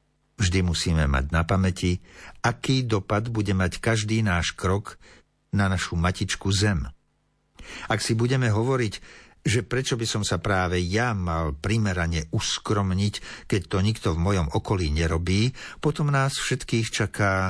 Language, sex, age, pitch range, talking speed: Slovak, male, 60-79, 95-120 Hz, 140 wpm